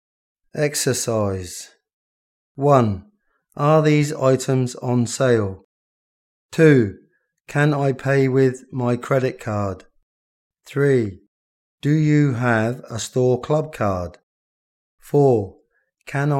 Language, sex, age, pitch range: Thai, male, 30-49, 95-140 Hz